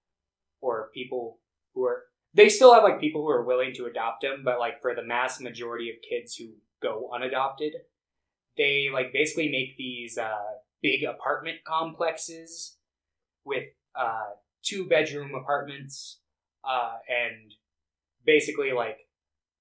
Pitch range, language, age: 115-155 Hz, English, 20-39